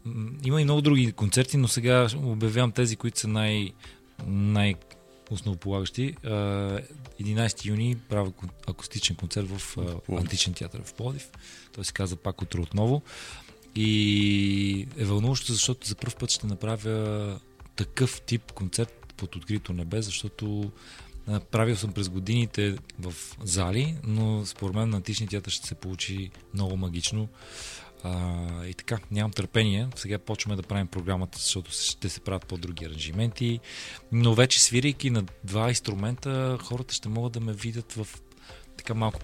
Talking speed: 140 wpm